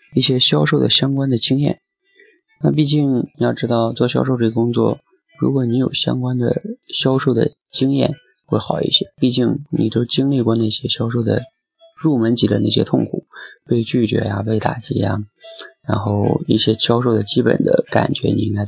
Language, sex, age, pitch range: Chinese, male, 20-39, 110-150 Hz